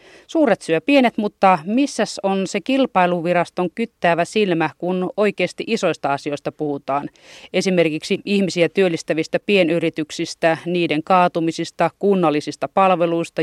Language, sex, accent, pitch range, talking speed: Finnish, female, native, 160-195 Hz, 105 wpm